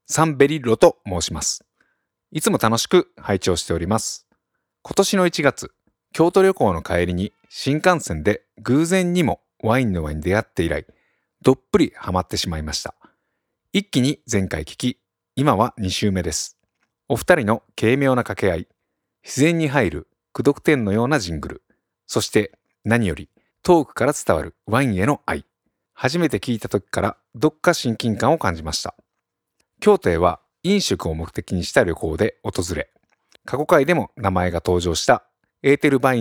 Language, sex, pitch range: Japanese, male, 95-155 Hz